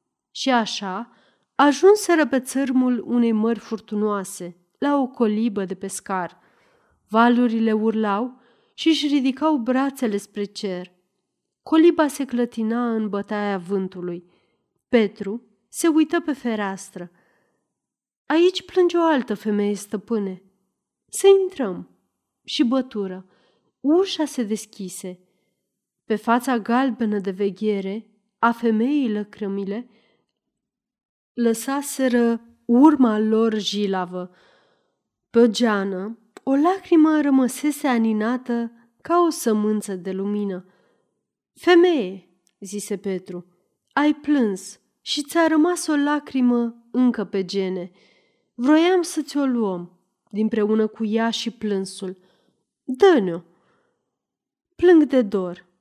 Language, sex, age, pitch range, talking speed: Romanian, female, 30-49, 200-265 Hz, 100 wpm